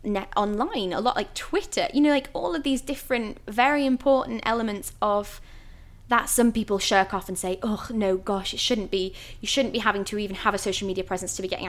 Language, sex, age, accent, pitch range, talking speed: English, female, 10-29, British, 200-250 Hz, 220 wpm